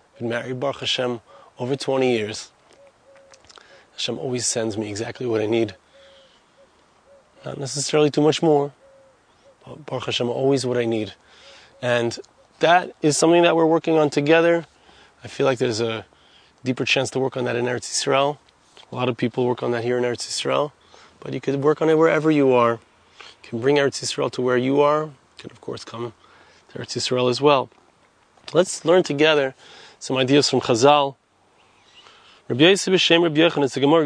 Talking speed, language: 170 wpm, English